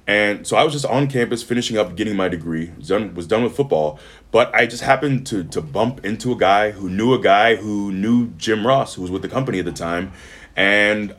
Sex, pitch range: male, 95-135 Hz